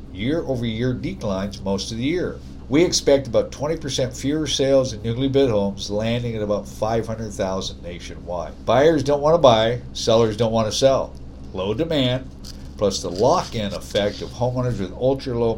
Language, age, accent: English, 60-79, American